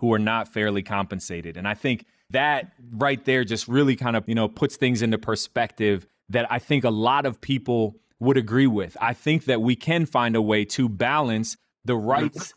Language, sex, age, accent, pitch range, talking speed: English, male, 30-49, American, 120-155 Hz, 205 wpm